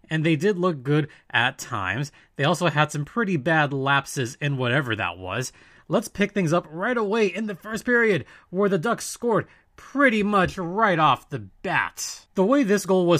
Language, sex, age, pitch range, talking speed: English, male, 30-49, 135-185 Hz, 195 wpm